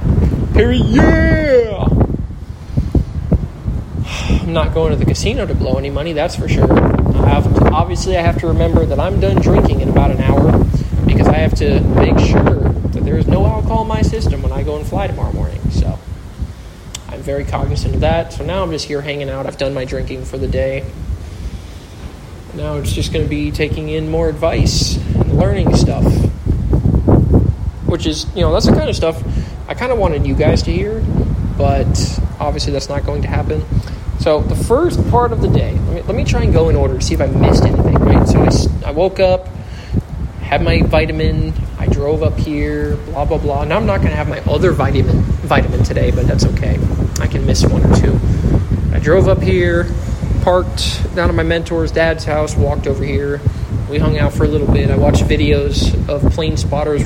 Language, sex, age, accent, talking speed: English, male, 20-39, American, 200 wpm